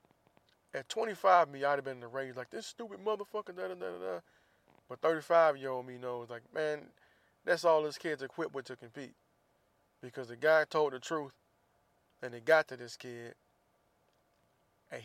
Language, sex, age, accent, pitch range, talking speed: English, male, 20-39, American, 125-150 Hz, 185 wpm